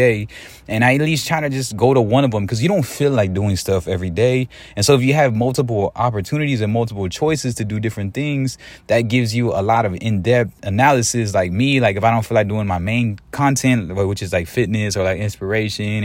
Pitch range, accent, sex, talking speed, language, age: 105-125 Hz, American, male, 230 wpm, English, 20-39